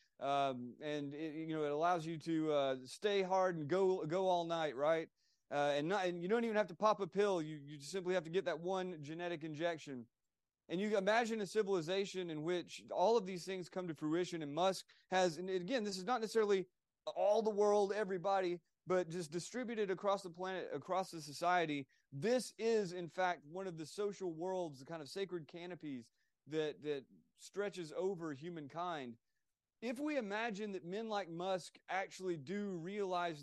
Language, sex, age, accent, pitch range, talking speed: English, male, 30-49, American, 155-195 Hz, 190 wpm